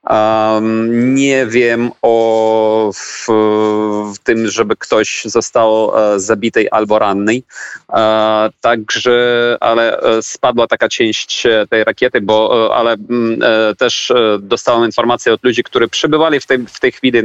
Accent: native